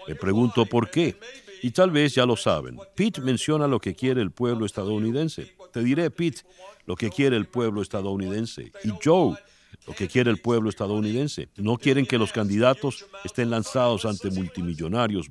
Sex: male